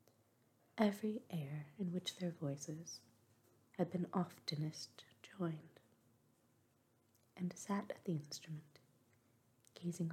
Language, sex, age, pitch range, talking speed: English, female, 30-49, 120-180 Hz, 95 wpm